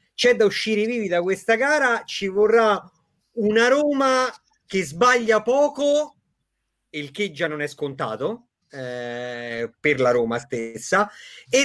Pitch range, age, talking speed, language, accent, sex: 165-225 Hz, 40-59, 135 wpm, Italian, native, male